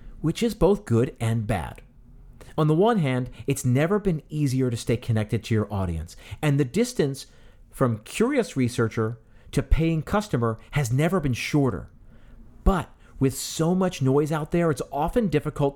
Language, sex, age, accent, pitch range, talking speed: English, male, 40-59, American, 115-160 Hz, 165 wpm